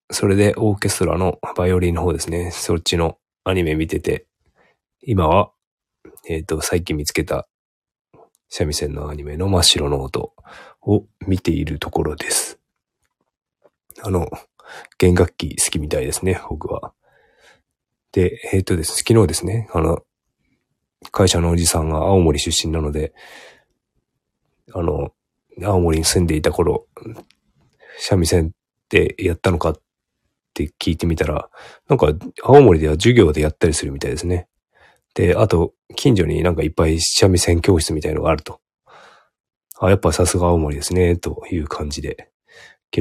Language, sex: Japanese, male